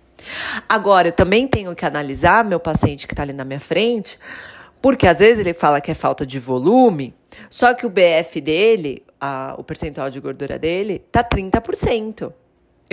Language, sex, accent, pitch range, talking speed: Portuguese, female, Brazilian, 150-225 Hz, 170 wpm